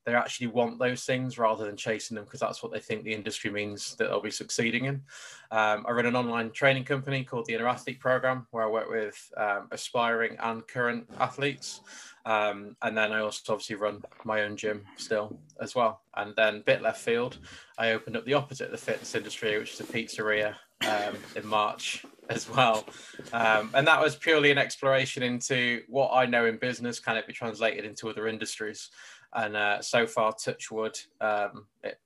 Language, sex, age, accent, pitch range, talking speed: English, male, 20-39, British, 110-130 Hz, 200 wpm